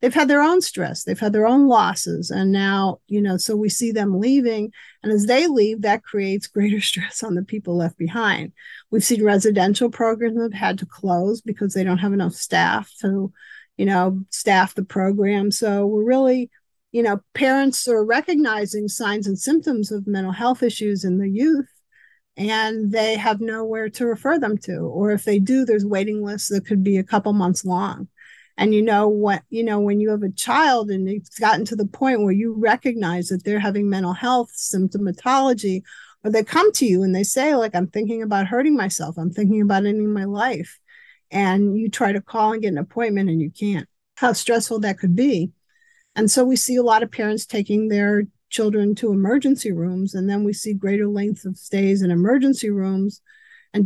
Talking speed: 200 wpm